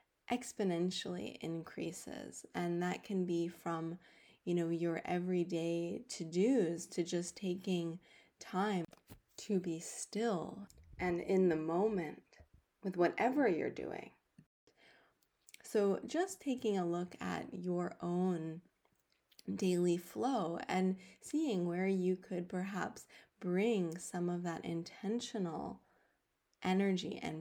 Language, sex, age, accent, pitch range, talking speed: English, female, 20-39, American, 165-195 Hz, 110 wpm